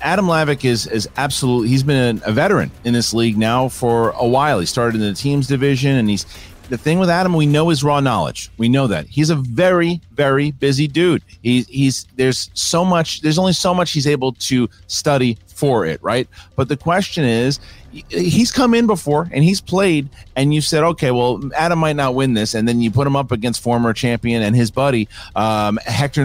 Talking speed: 215 wpm